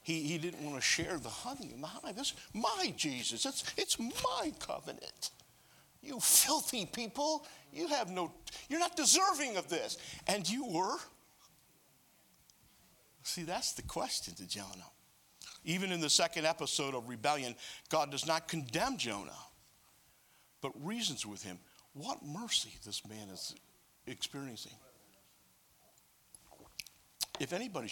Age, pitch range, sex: 60-79, 125-180 Hz, male